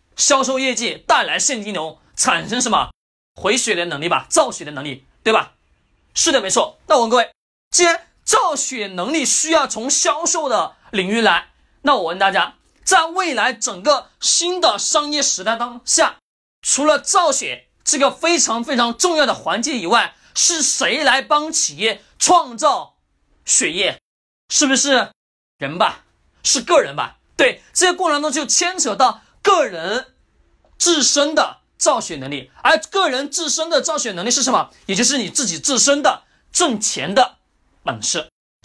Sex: male